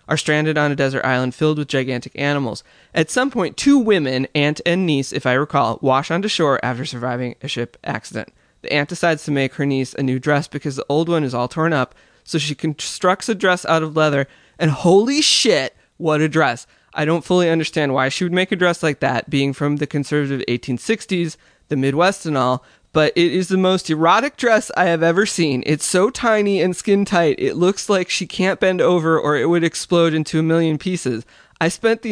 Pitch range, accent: 135-180 Hz, American